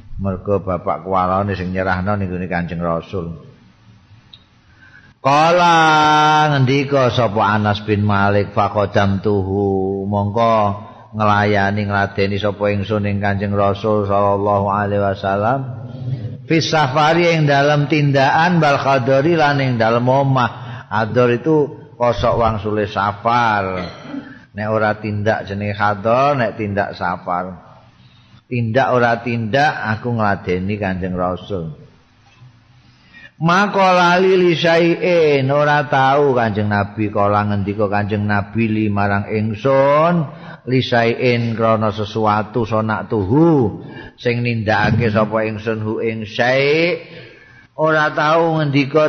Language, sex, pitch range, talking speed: Indonesian, male, 105-135 Hz, 100 wpm